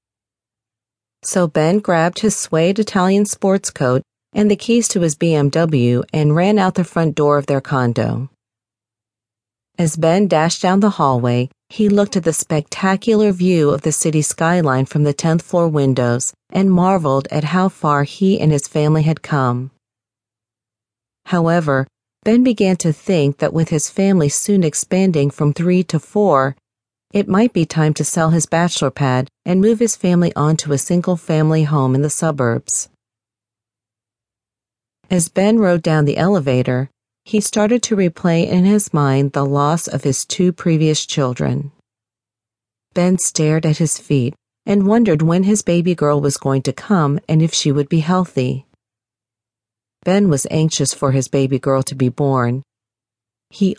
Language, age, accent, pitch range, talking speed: English, 40-59, American, 125-180 Hz, 160 wpm